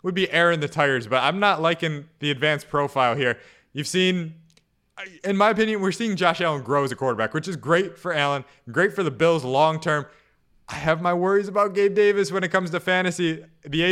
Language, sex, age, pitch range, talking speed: English, male, 20-39, 135-170 Hz, 210 wpm